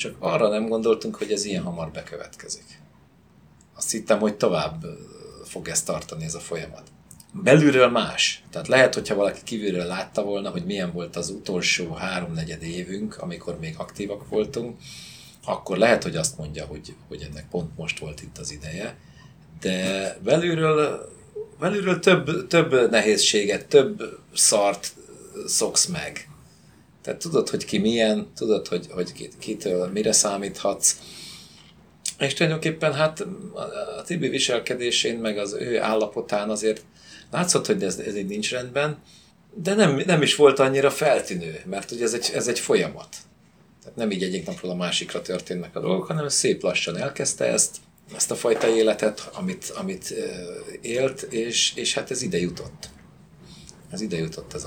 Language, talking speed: Hungarian, 150 wpm